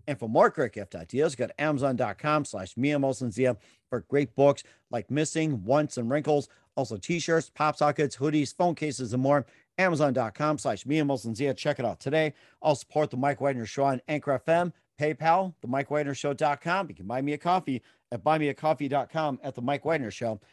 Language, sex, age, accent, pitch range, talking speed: English, male, 40-59, American, 130-160 Hz, 180 wpm